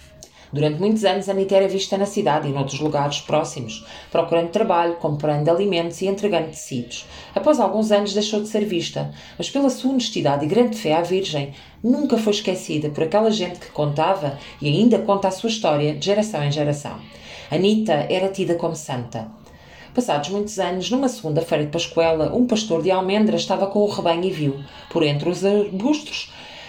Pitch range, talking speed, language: 155-205 Hz, 185 wpm, Portuguese